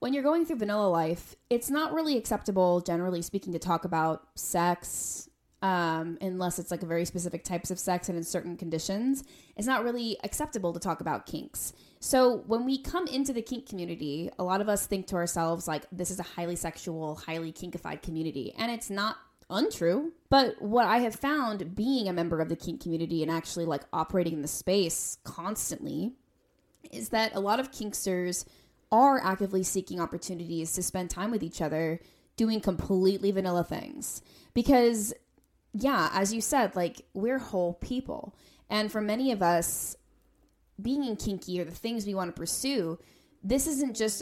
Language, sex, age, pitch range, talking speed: English, female, 20-39, 170-225 Hz, 180 wpm